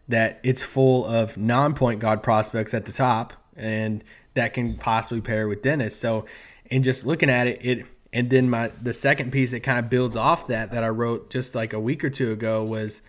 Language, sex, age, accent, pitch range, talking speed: English, male, 20-39, American, 110-130 Hz, 215 wpm